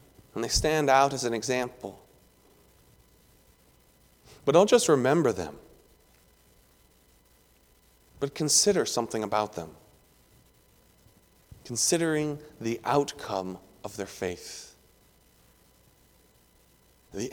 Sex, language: male, English